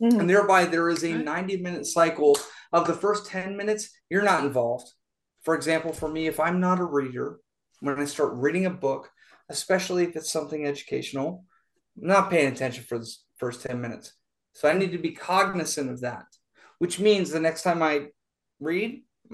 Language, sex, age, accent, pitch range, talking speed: English, male, 30-49, American, 145-195 Hz, 185 wpm